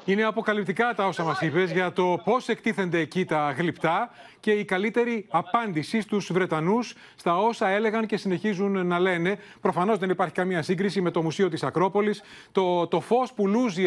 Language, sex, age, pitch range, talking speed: Greek, male, 30-49, 170-215 Hz, 175 wpm